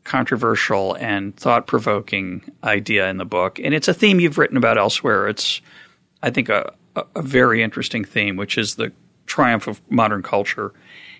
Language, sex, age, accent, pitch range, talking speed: English, male, 40-59, American, 105-145 Hz, 160 wpm